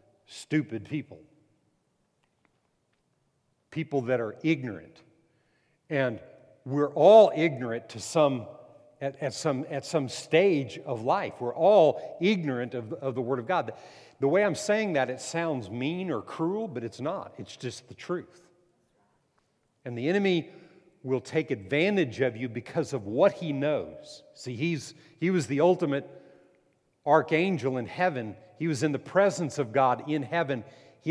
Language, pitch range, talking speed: English, 130-165 Hz, 150 wpm